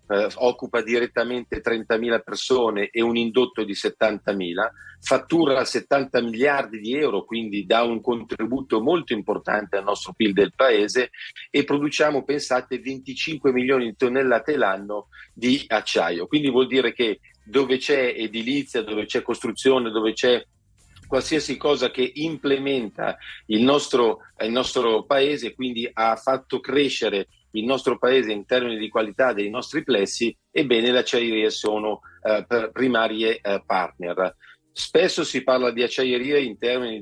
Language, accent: Italian, native